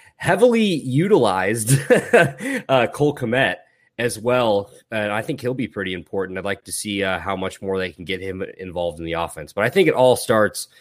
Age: 20-39